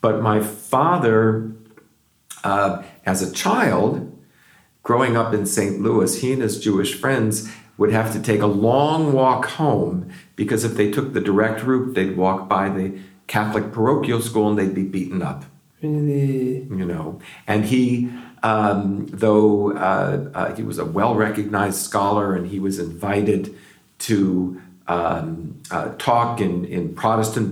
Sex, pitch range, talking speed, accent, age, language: male, 95-115 Hz, 150 wpm, American, 50-69, English